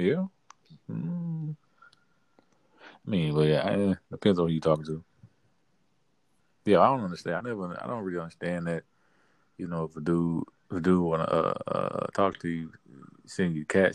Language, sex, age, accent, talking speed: English, male, 30-49, American, 180 wpm